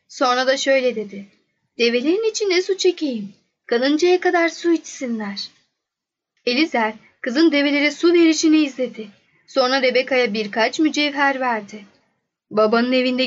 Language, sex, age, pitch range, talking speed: Turkish, female, 10-29, 230-310 Hz, 115 wpm